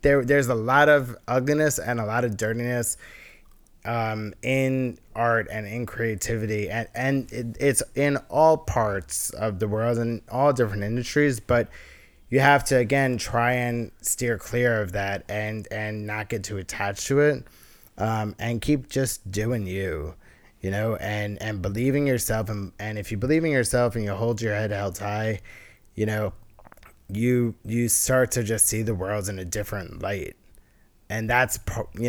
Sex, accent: male, American